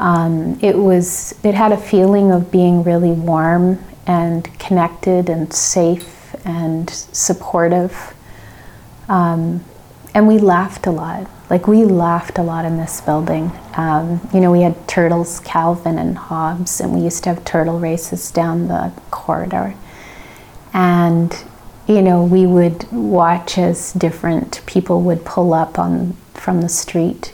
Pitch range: 170-190 Hz